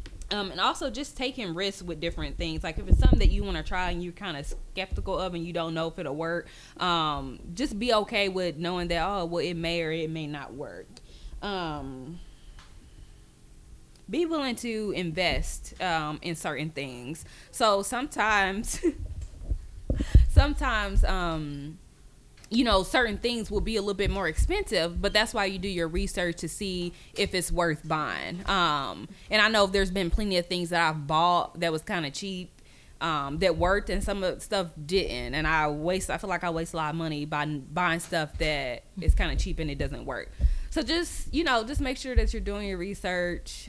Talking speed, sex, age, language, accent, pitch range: 200 wpm, female, 20-39, English, American, 160-200 Hz